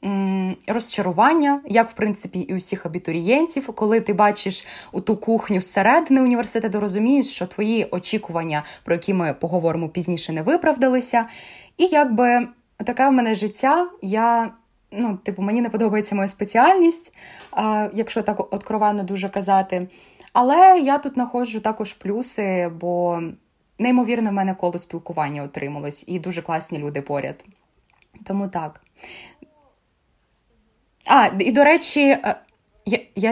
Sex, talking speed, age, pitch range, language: female, 125 wpm, 20-39, 190-235 Hz, Ukrainian